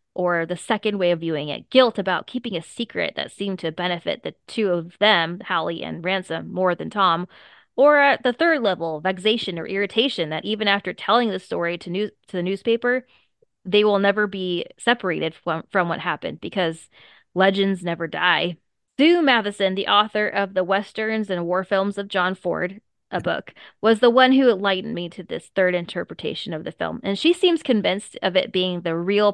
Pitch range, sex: 175-210 Hz, female